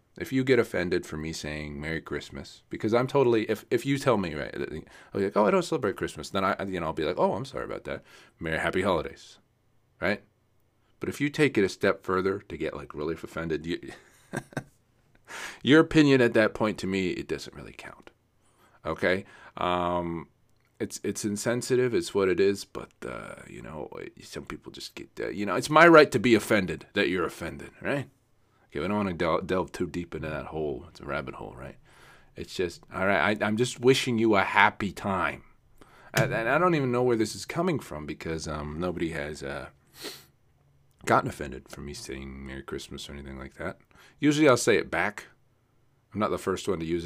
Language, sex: English, male